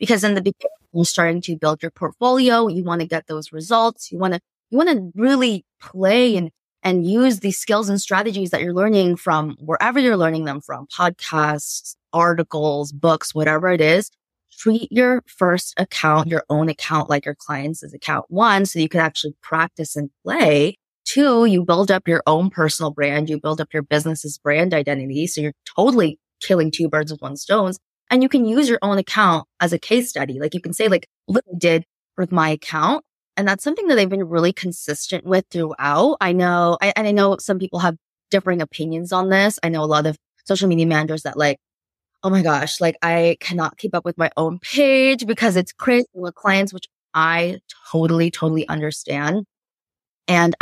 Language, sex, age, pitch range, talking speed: English, female, 20-39, 155-195 Hz, 195 wpm